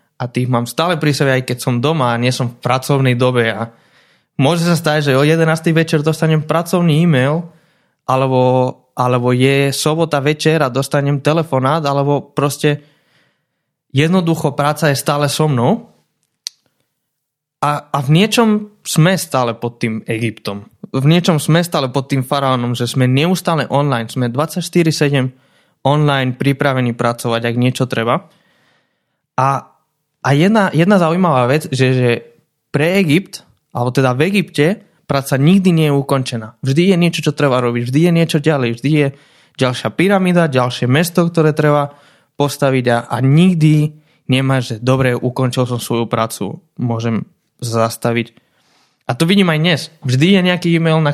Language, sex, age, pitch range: Slovak, male, 20-39, 130-160 Hz